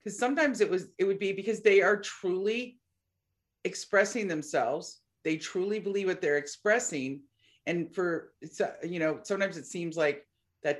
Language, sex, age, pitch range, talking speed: English, female, 50-69, 150-200 Hz, 160 wpm